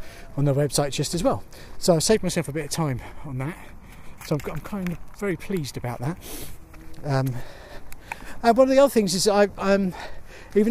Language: English